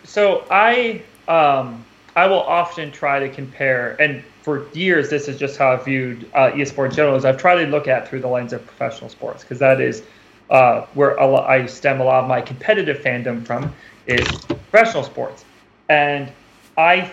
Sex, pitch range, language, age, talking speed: male, 130-155 Hz, English, 30-49, 190 wpm